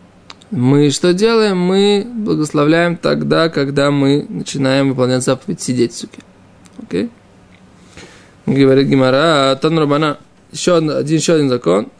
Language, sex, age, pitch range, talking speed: Russian, male, 20-39, 135-180 Hz, 100 wpm